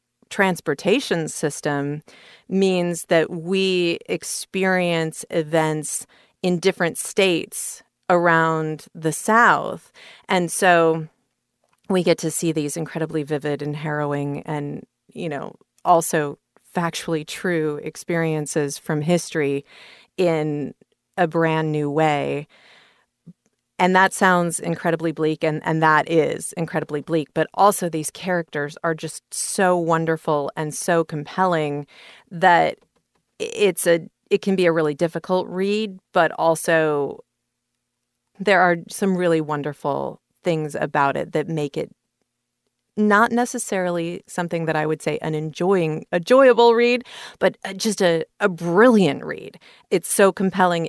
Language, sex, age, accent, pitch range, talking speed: English, female, 40-59, American, 155-185 Hz, 125 wpm